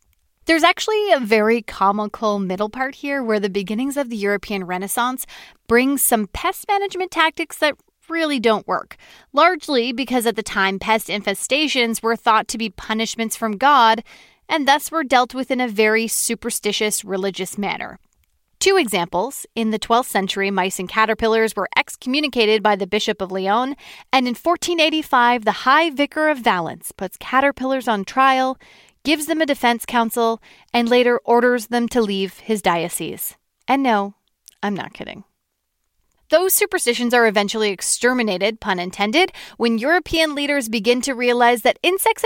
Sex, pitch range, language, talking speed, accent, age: female, 215-285 Hz, English, 155 wpm, American, 30-49